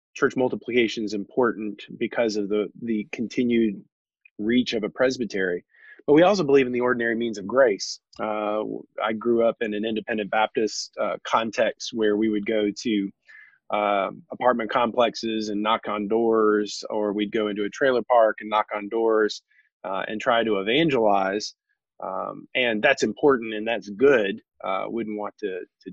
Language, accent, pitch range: English, American, 105-120 Hz